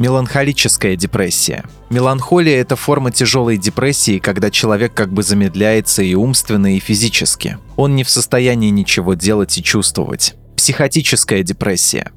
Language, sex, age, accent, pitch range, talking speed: Russian, male, 20-39, native, 105-130 Hz, 130 wpm